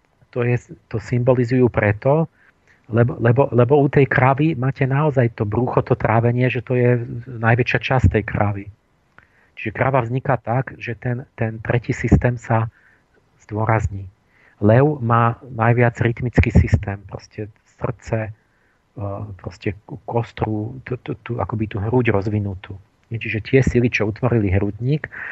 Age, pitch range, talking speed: 40-59, 105-120 Hz, 130 wpm